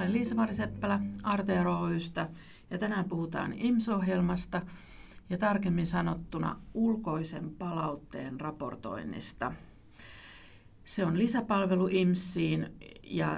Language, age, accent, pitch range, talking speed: Finnish, 50-69, native, 155-200 Hz, 75 wpm